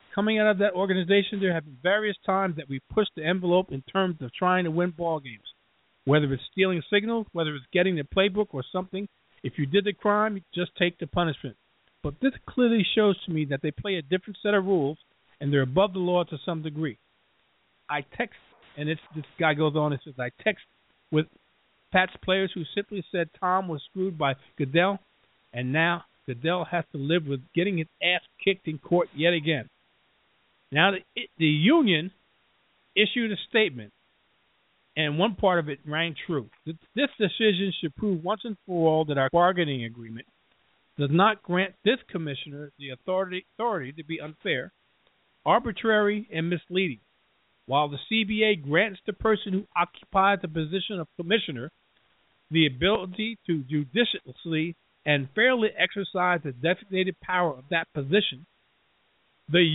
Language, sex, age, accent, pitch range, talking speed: English, male, 50-69, American, 150-195 Hz, 170 wpm